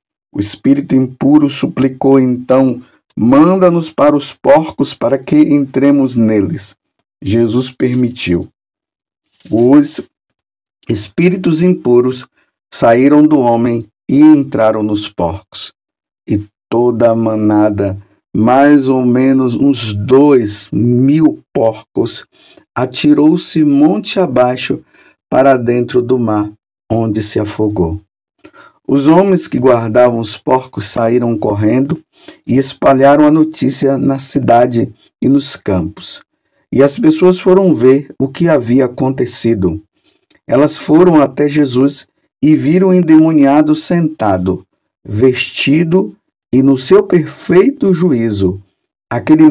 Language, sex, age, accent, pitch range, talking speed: Portuguese, male, 50-69, Brazilian, 115-150 Hz, 105 wpm